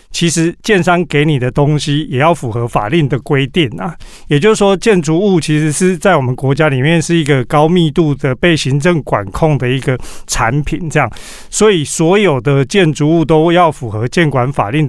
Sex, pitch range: male, 140-180 Hz